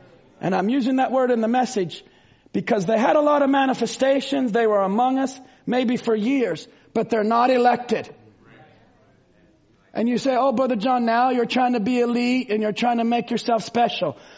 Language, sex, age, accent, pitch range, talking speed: English, male, 40-59, American, 225-345 Hz, 190 wpm